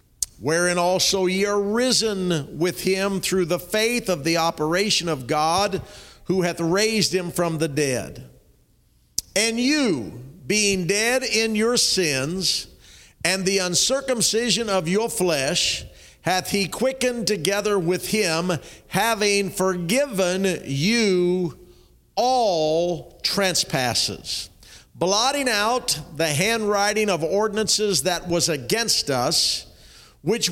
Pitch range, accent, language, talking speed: 165-205 Hz, American, English, 110 wpm